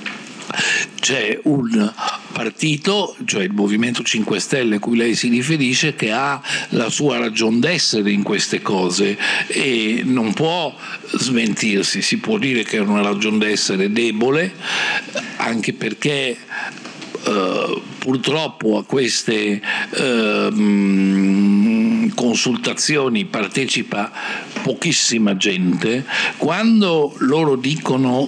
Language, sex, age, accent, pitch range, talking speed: Italian, male, 60-79, native, 110-135 Hz, 105 wpm